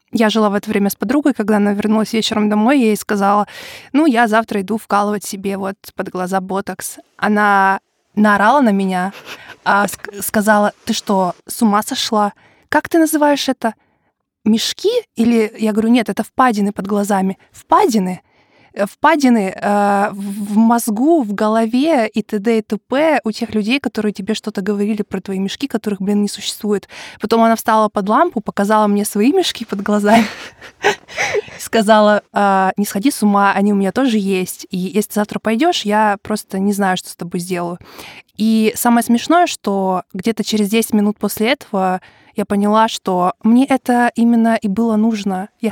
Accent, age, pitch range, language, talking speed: native, 20-39, 200-230 Hz, Russian, 165 wpm